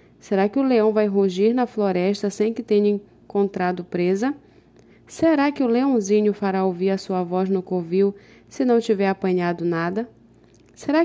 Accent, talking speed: Brazilian, 165 wpm